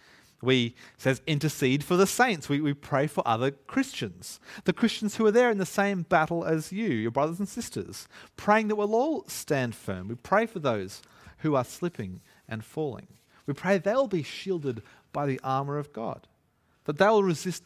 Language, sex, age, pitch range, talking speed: English, male, 30-49, 130-190 Hz, 185 wpm